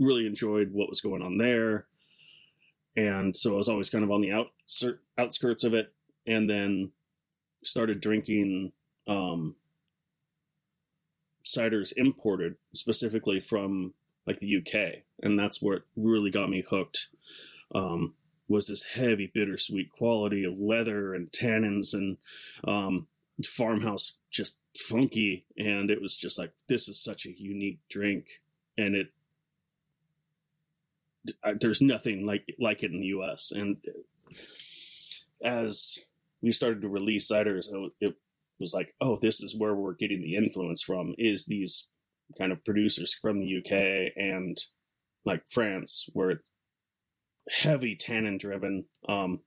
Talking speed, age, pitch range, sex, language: 130 wpm, 30-49, 95-120 Hz, male, English